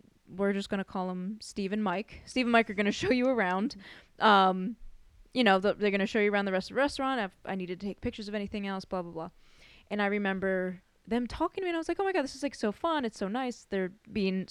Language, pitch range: English, 185-225 Hz